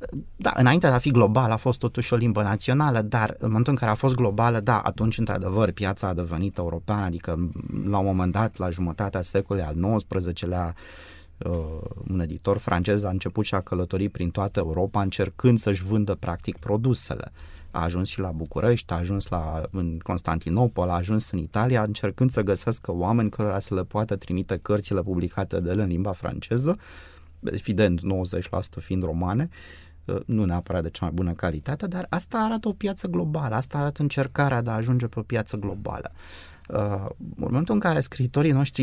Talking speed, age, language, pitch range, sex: 180 wpm, 30-49, Romanian, 90-130 Hz, male